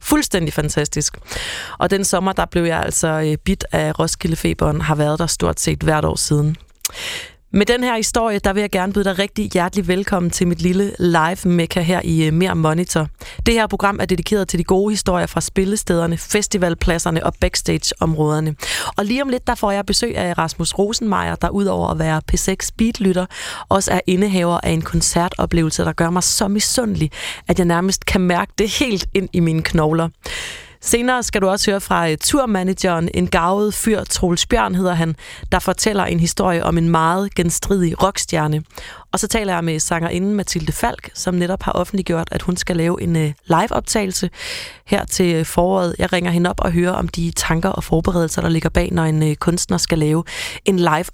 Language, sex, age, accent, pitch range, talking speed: Danish, female, 30-49, native, 165-200 Hz, 190 wpm